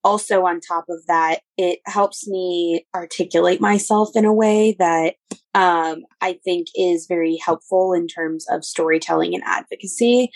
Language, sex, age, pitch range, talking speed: English, female, 20-39, 175-205 Hz, 150 wpm